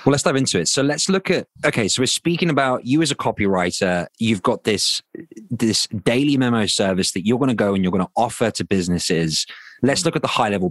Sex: male